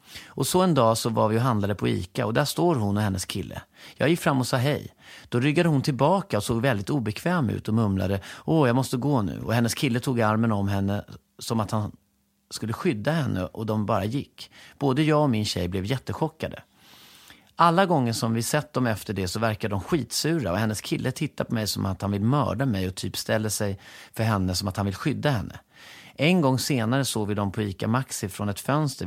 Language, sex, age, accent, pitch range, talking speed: Swedish, male, 30-49, native, 105-140 Hz, 230 wpm